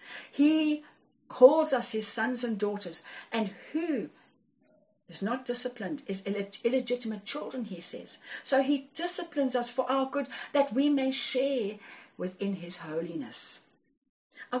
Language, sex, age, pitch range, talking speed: English, female, 50-69, 195-270 Hz, 135 wpm